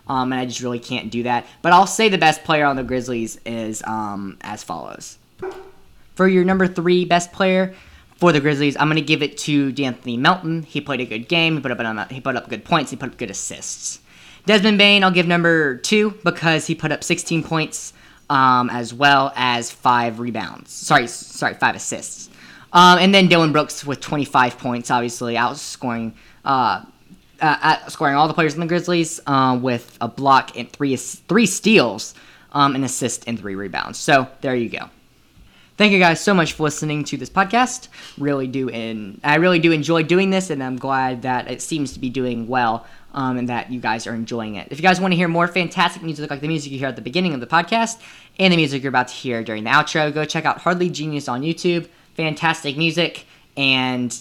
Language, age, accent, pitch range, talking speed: English, 10-29, American, 125-170 Hz, 210 wpm